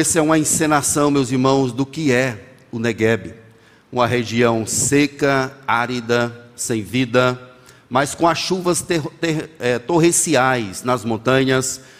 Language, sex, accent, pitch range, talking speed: Portuguese, male, Brazilian, 125-180 Hz, 135 wpm